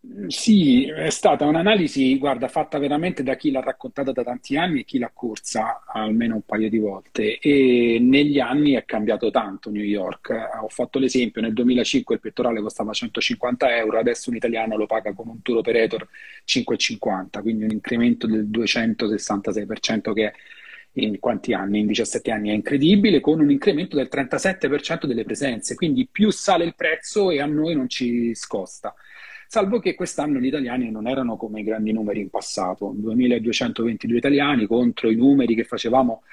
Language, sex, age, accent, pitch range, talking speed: Italian, male, 40-59, native, 115-150 Hz, 170 wpm